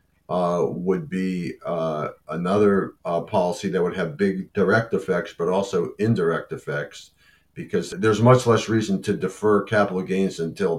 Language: English